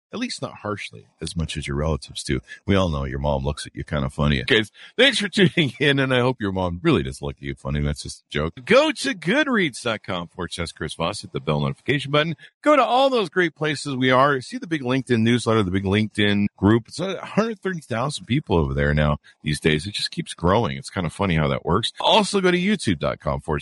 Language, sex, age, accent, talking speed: English, male, 50-69, American, 240 wpm